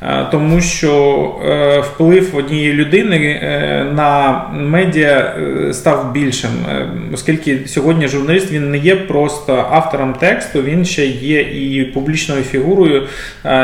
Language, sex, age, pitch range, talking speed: Ukrainian, male, 20-39, 130-155 Hz, 125 wpm